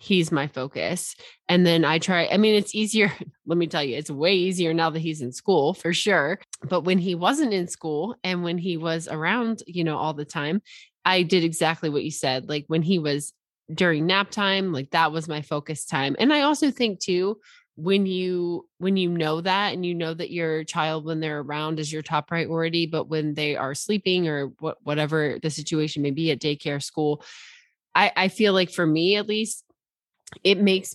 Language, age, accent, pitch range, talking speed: English, 20-39, American, 150-190 Hz, 210 wpm